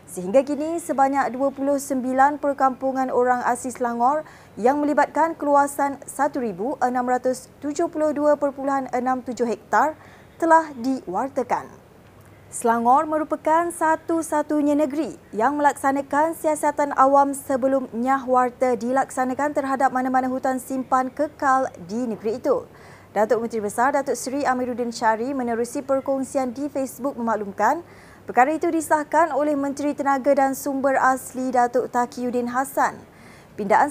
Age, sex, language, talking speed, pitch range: 20-39, female, Malay, 105 wpm, 250-290 Hz